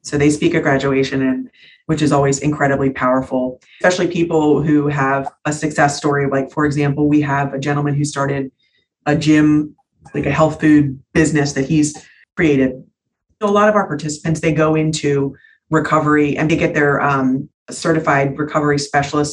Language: English